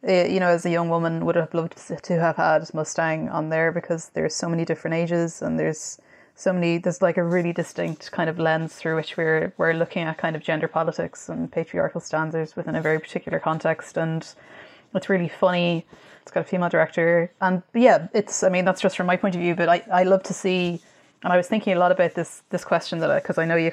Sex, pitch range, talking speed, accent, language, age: female, 165-185 Hz, 240 wpm, Irish, English, 20-39